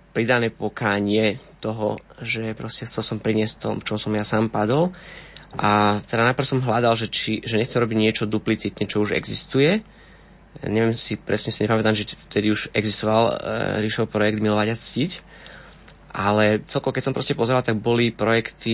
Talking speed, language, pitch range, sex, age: 175 wpm, Slovak, 105-115 Hz, male, 20-39